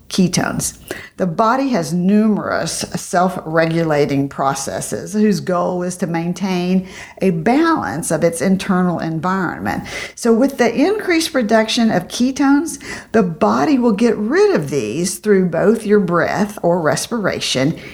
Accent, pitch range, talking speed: American, 175-250 Hz, 125 wpm